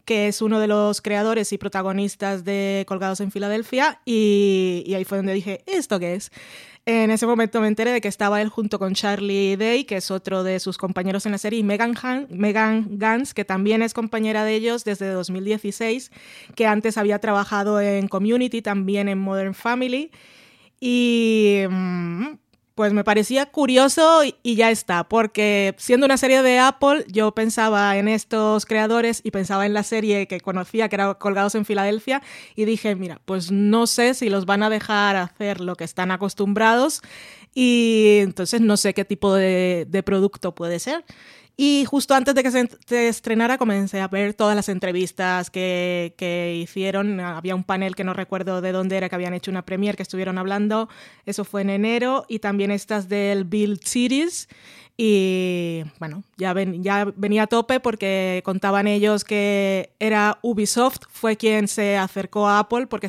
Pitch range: 195-225 Hz